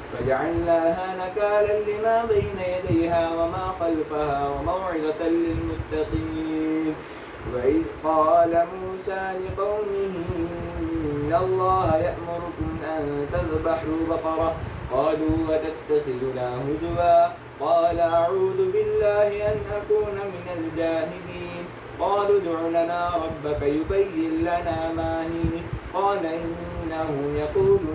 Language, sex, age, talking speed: Arabic, male, 20-39, 85 wpm